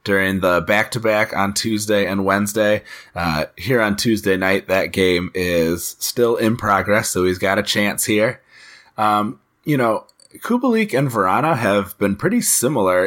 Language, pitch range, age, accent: English, 95-115 Hz, 30-49, American